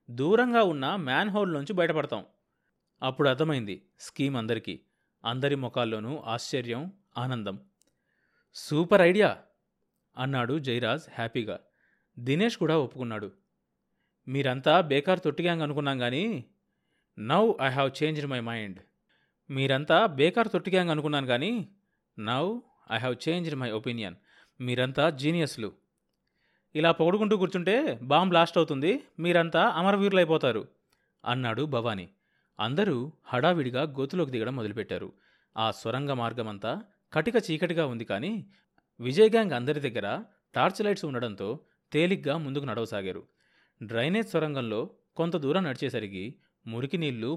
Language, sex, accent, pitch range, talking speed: Telugu, male, native, 120-170 Hz, 105 wpm